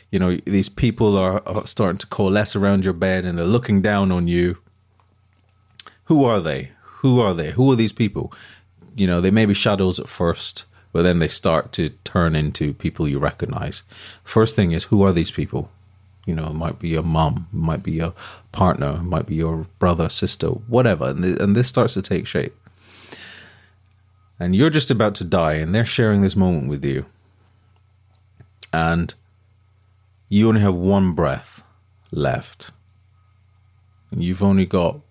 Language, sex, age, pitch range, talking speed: English, male, 30-49, 85-100 Hz, 180 wpm